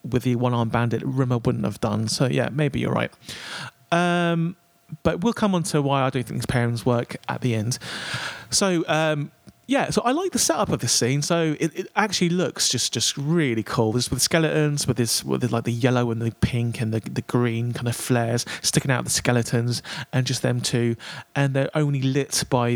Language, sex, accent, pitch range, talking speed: English, male, British, 120-160 Hz, 215 wpm